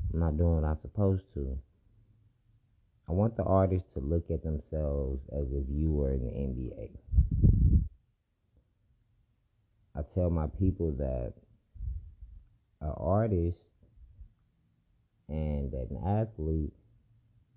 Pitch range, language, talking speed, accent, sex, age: 80-110 Hz, English, 115 wpm, American, male, 30-49